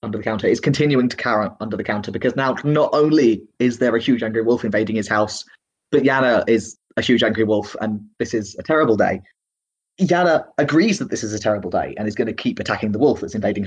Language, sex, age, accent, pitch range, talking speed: English, male, 30-49, British, 95-120 Hz, 235 wpm